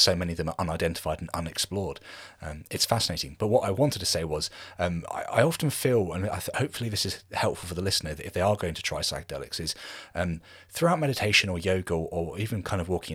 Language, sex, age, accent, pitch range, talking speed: English, male, 30-49, British, 85-105 Hz, 235 wpm